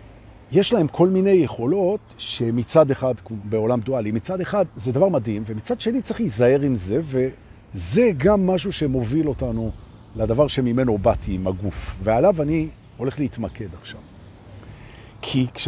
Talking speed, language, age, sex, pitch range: 95 wpm, Hebrew, 50-69, male, 105-175 Hz